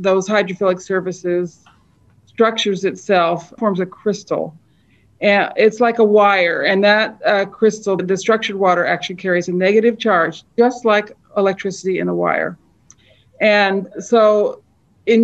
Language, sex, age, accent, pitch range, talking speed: English, female, 50-69, American, 175-210 Hz, 135 wpm